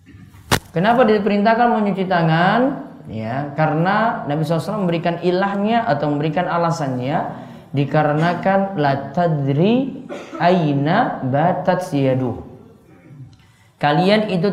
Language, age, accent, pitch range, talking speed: Indonesian, 20-39, native, 140-210 Hz, 85 wpm